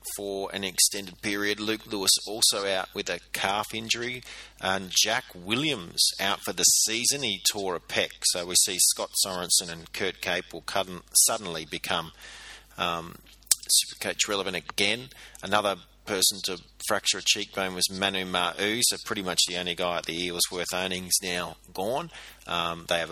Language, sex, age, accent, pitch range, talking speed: English, male, 30-49, Australian, 90-105 Hz, 165 wpm